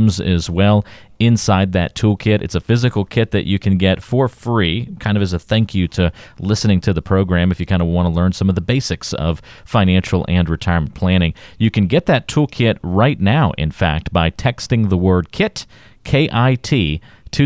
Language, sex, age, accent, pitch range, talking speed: English, male, 40-59, American, 85-110 Hz, 200 wpm